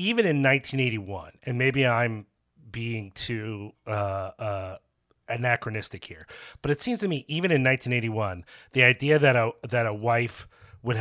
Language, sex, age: English, male, 30-49